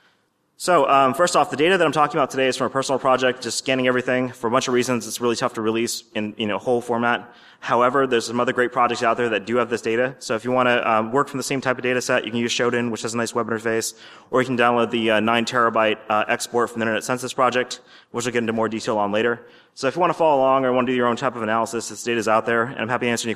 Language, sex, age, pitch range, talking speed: English, male, 30-49, 115-130 Hz, 310 wpm